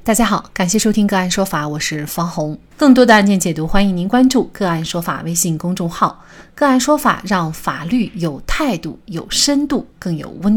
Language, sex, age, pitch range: Chinese, female, 30-49, 170-245 Hz